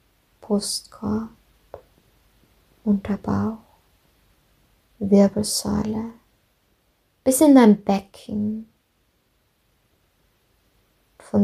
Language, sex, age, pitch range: German, female, 20-39, 195-220 Hz